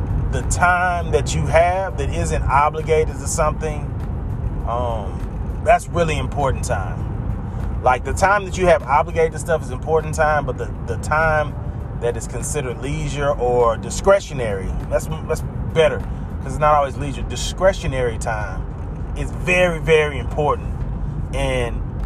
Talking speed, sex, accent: 140 wpm, male, American